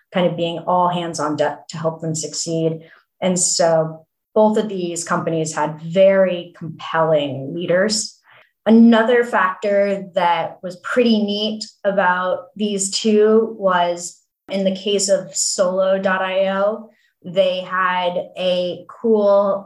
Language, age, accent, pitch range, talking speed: English, 20-39, American, 175-210 Hz, 120 wpm